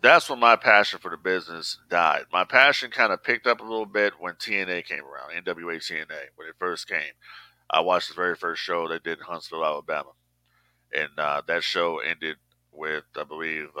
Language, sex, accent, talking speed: English, male, American, 200 wpm